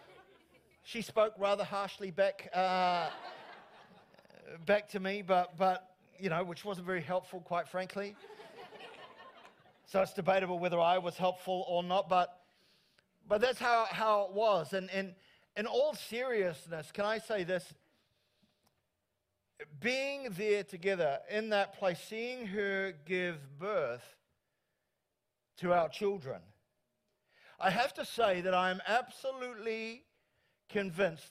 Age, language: 50-69, English